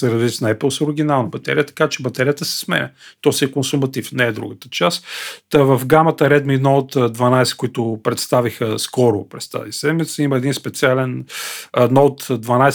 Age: 40-59